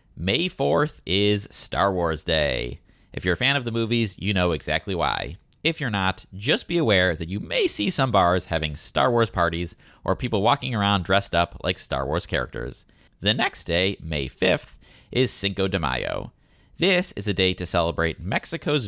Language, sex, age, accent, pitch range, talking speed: English, male, 30-49, American, 85-120 Hz, 190 wpm